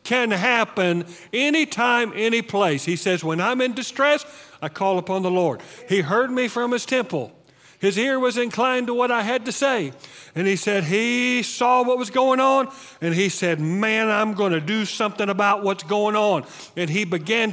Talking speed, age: 195 wpm, 50-69